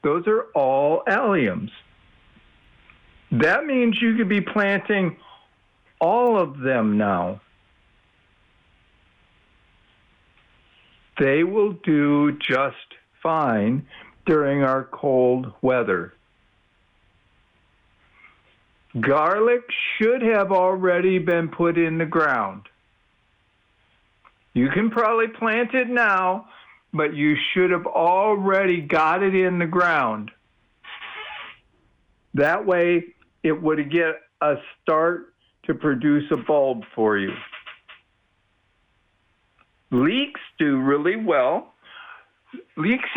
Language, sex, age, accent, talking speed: English, male, 60-79, American, 90 wpm